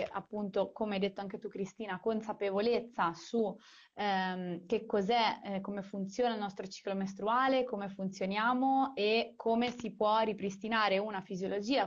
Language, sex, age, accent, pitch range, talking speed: Italian, female, 20-39, native, 190-230 Hz, 135 wpm